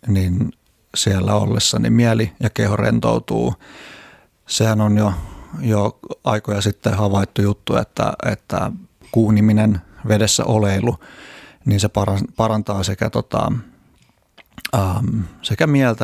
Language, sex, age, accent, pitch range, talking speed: Finnish, male, 30-49, native, 100-115 Hz, 105 wpm